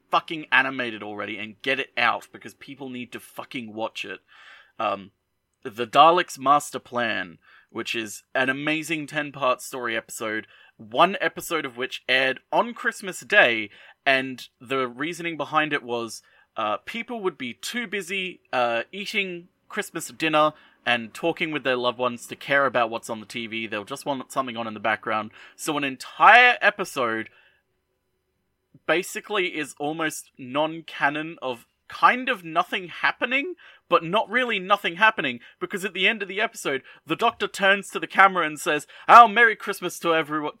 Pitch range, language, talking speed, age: 120-195 Hz, English, 160 wpm, 30-49